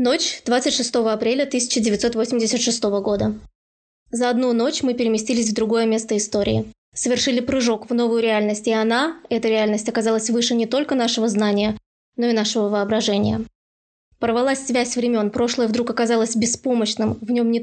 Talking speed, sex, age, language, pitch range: 145 wpm, female, 20-39, Russian, 220-250 Hz